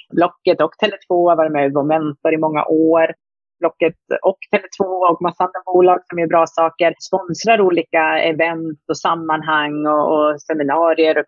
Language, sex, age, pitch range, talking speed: Swedish, female, 30-49, 160-190 Hz, 165 wpm